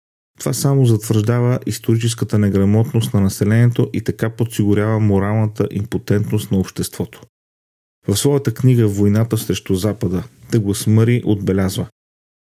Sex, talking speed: male, 115 wpm